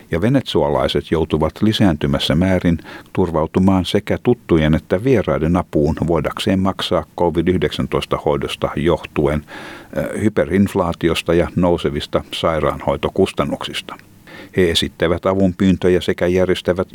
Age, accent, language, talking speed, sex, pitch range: 60-79, native, Finnish, 85 wpm, male, 80-100 Hz